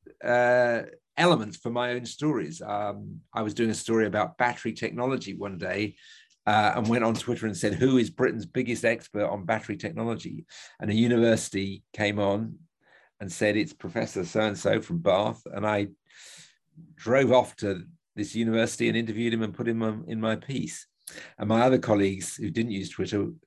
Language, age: English, 50-69